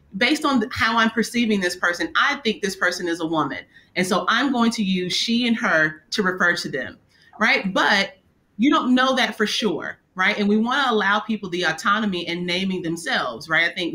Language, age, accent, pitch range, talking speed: English, 30-49, American, 175-225 Hz, 215 wpm